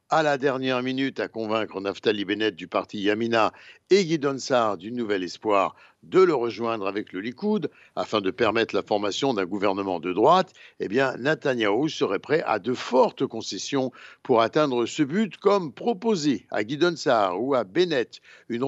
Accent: French